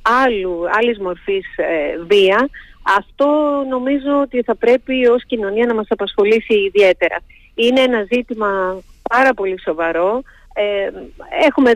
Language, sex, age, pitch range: Greek, female, 40-59, 200-245 Hz